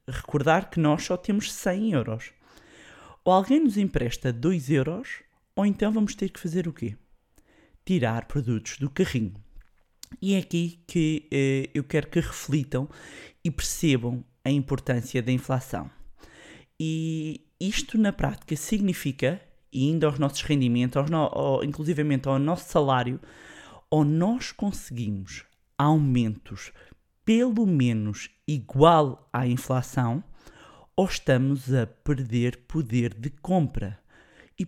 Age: 20-39